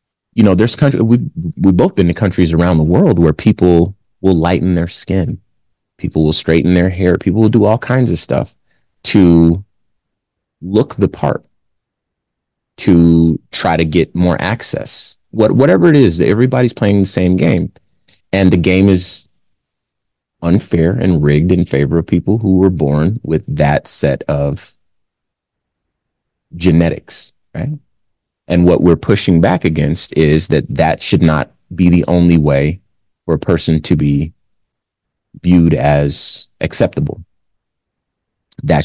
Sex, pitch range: male, 80-105 Hz